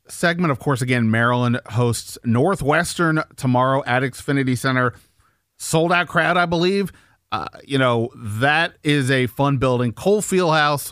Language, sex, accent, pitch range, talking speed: English, male, American, 110-145 Hz, 145 wpm